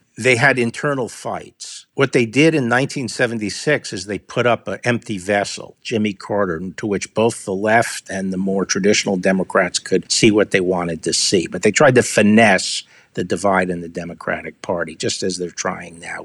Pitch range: 105-140 Hz